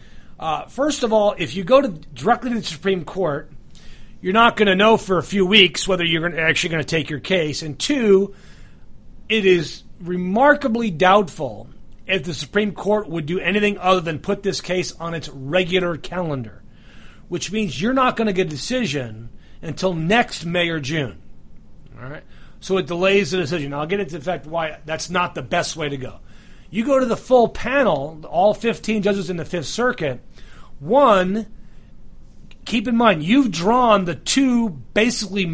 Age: 40-59